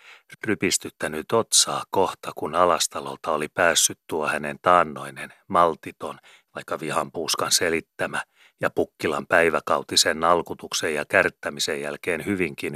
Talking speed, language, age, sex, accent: 115 wpm, Finnish, 30-49, male, native